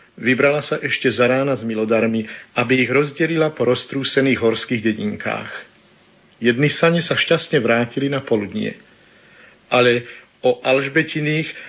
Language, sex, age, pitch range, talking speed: Slovak, male, 50-69, 125-150 Hz, 125 wpm